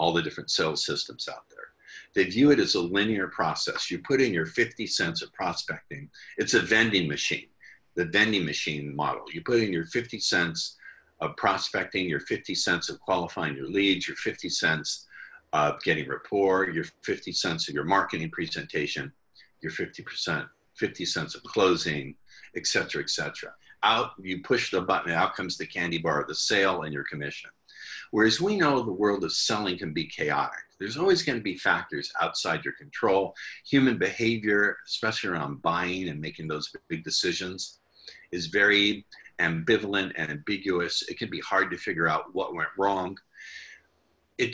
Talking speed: 175 wpm